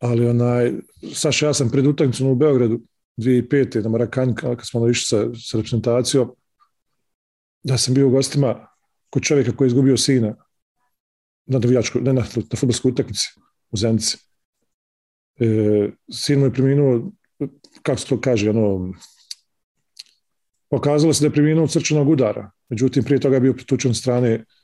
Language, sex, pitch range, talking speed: English, male, 120-145 Hz, 145 wpm